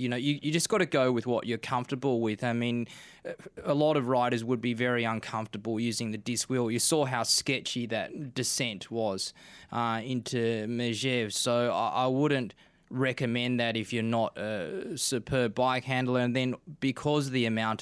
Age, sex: 20-39, male